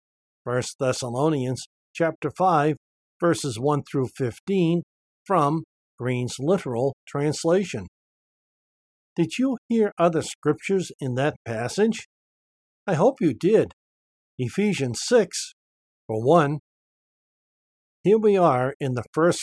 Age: 60-79